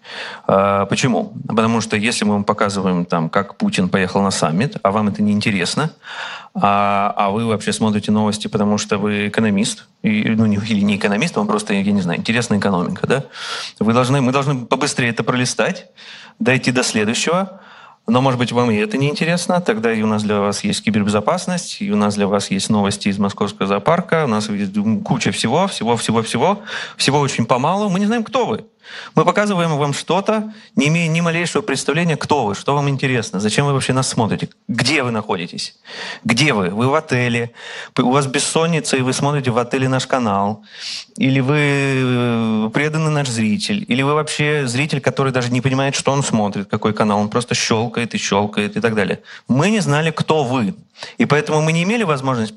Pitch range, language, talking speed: 110-185 Hz, Russian, 190 wpm